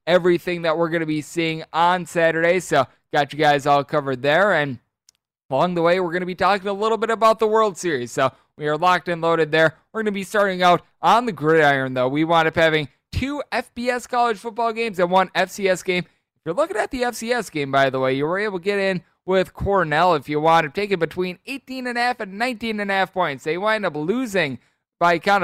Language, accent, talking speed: English, American, 235 wpm